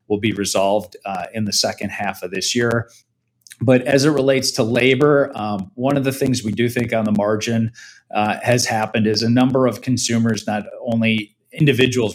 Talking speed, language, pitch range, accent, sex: 195 wpm, English, 105-125 Hz, American, male